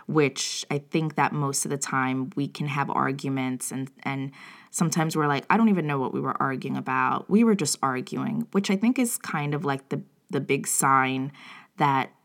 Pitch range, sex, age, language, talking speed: 135-175 Hz, female, 20-39, English, 205 wpm